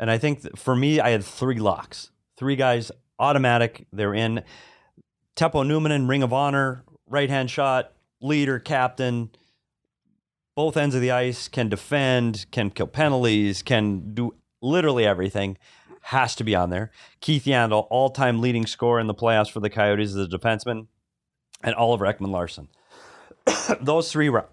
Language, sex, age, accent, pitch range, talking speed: English, male, 30-49, American, 110-135 Hz, 160 wpm